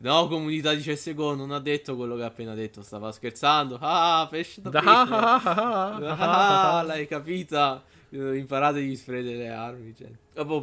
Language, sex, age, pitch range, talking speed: Italian, male, 20-39, 105-130 Hz, 150 wpm